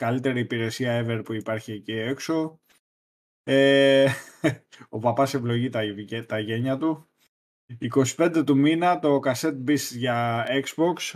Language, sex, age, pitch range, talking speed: Greek, male, 20-39, 115-145 Hz, 115 wpm